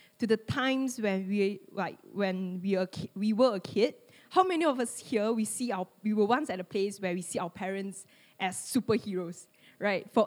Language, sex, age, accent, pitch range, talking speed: English, female, 20-39, Malaysian, 205-260 Hz, 200 wpm